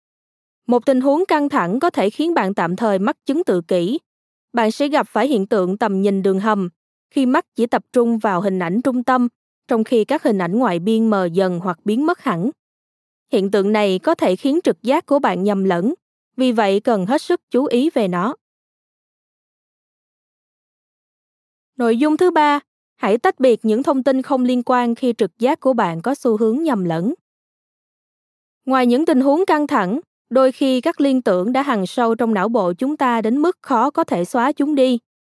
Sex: female